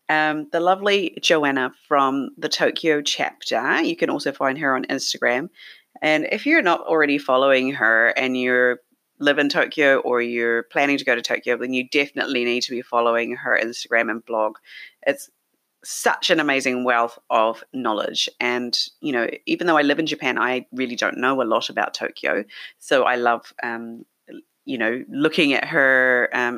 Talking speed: 180 wpm